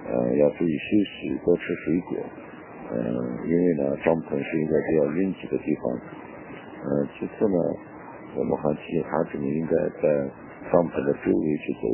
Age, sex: 60-79, male